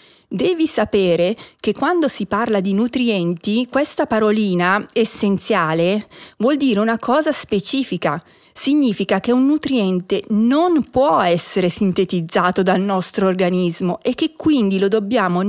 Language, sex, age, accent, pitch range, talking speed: Italian, female, 40-59, native, 195-270 Hz, 125 wpm